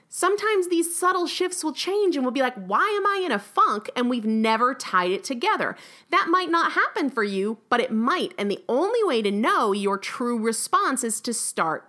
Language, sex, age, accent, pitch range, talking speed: English, female, 30-49, American, 200-310 Hz, 215 wpm